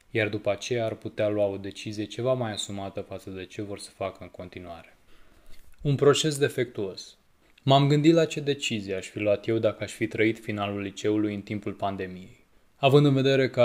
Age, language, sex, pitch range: 20-39, Romanian, male, 105-125 Hz